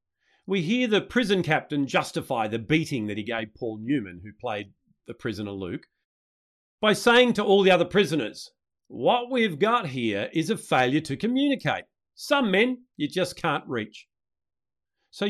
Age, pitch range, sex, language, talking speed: 40-59, 125-200 Hz, male, English, 160 wpm